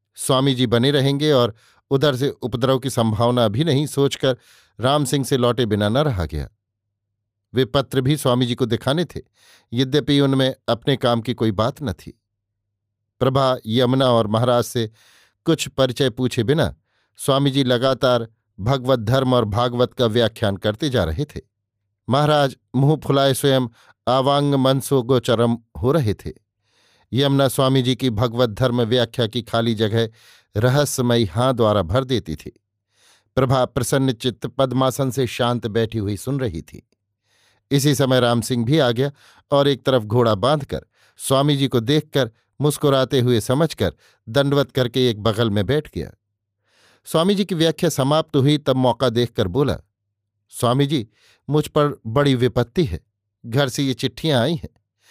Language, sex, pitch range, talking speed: Hindi, male, 110-140 Hz, 155 wpm